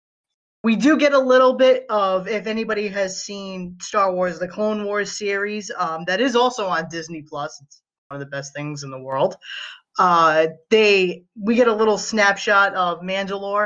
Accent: American